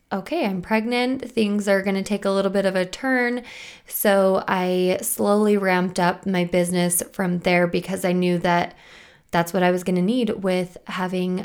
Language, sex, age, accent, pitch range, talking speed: English, female, 20-39, American, 180-210 Hz, 190 wpm